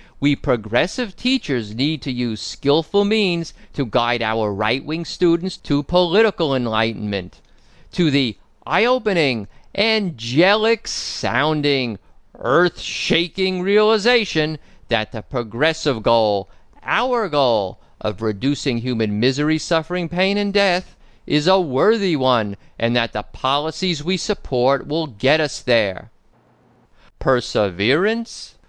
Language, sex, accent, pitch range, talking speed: English, male, American, 110-170 Hz, 105 wpm